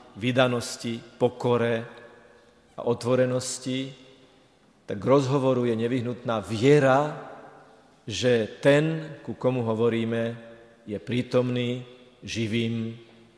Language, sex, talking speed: Slovak, male, 80 wpm